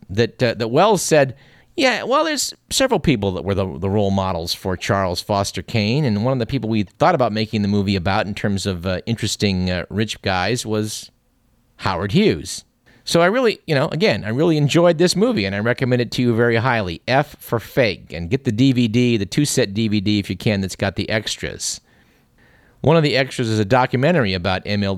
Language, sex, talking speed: English, male, 210 wpm